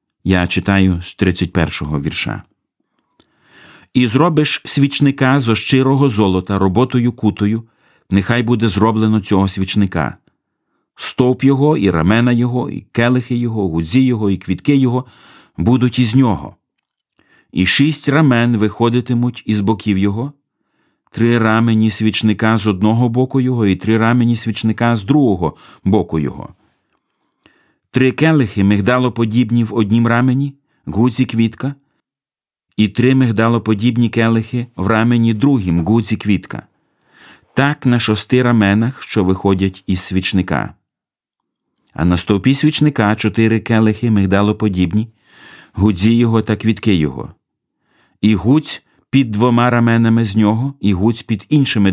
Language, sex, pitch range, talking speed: Ukrainian, male, 100-125 Hz, 125 wpm